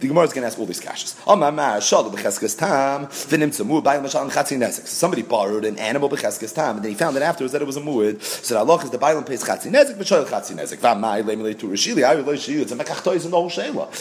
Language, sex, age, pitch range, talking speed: English, male, 30-49, 130-210 Hz, 105 wpm